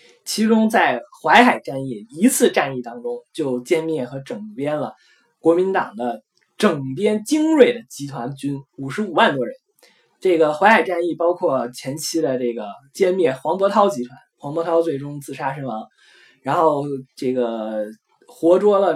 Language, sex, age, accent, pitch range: Chinese, male, 20-39, native, 130-195 Hz